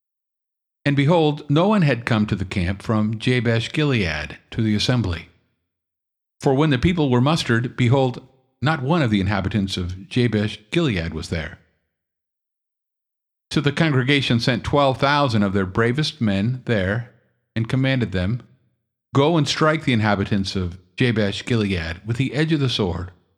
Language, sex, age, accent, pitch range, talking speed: English, male, 50-69, American, 100-130 Hz, 145 wpm